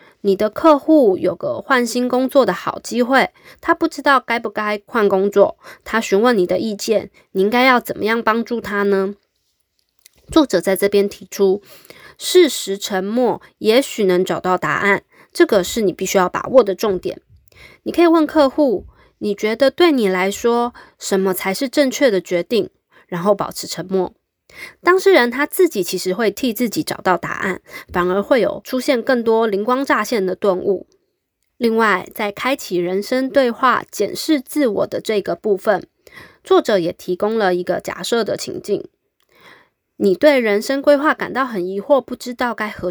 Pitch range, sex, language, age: 200-275 Hz, female, Chinese, 20-39